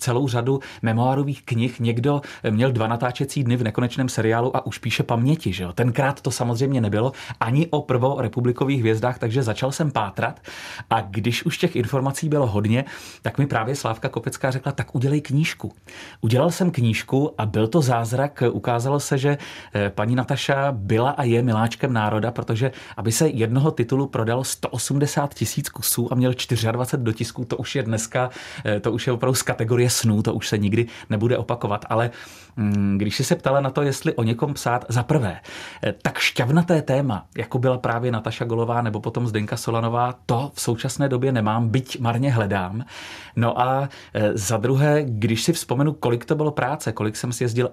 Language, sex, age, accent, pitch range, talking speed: Czech, male, 30-49, native, 115-135 Hz, 180 wpm